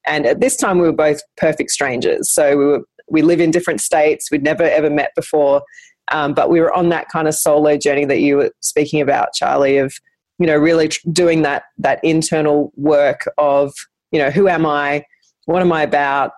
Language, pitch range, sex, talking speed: English, 145-175 Hz, female, 210 wpm